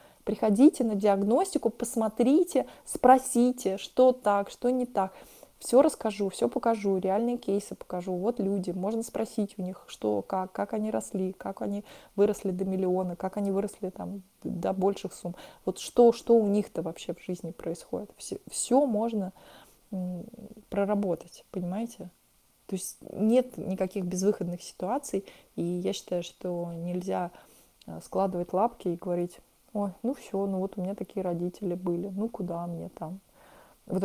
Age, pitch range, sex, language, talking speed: 20-39, 185-225 Hz, female, Russian, 145 wpm